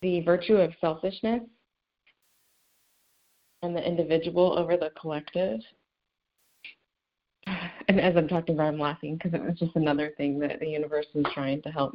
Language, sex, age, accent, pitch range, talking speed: English, female, 30-49, American, 150-220 Hz, 150 wpm